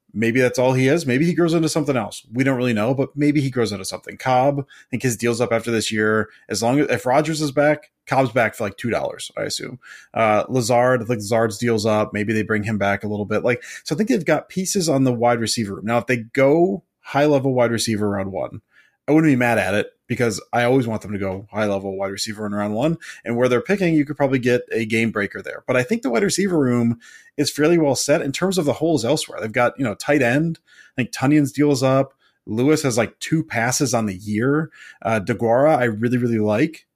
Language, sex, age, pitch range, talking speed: English, male, 20-39, 115-145 Hz, 250 wpm